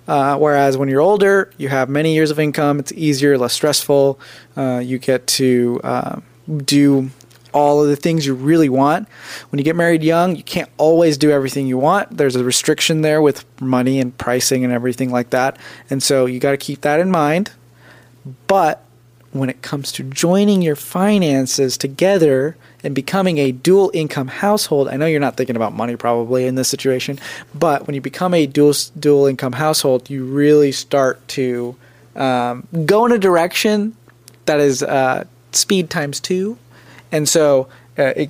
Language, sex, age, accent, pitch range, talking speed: English, male, 20-39, American, 130-155 Hz, 180 wpm